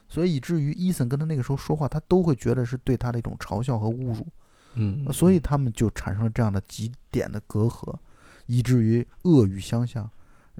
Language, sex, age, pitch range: Chinese, male, 20-39, 105-135 Hz